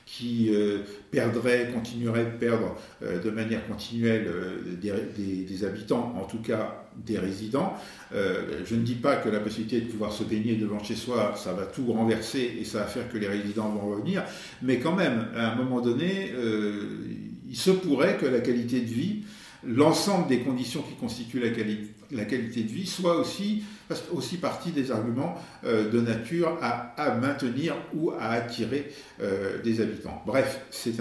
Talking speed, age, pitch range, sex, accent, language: 180 wpm, 50-69, 110-130 Hz, male, French, French